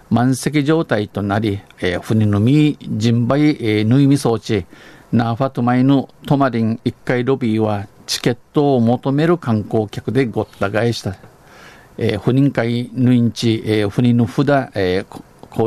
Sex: male